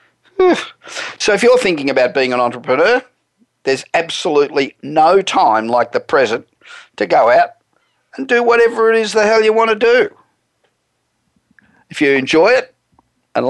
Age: 50-69